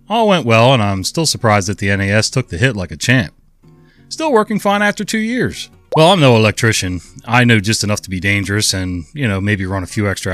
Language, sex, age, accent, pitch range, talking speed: English, male, 30-49, American, 95-120 Hz, 240 wpm